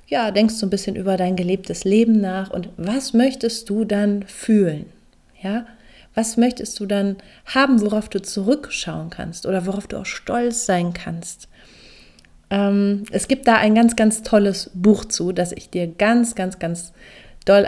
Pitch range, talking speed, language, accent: 185-220 Hz, 175 wpm, German, German